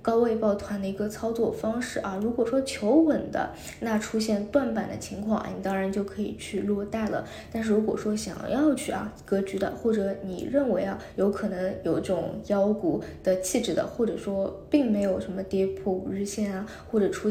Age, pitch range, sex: 20-39, 200-225 Hz, female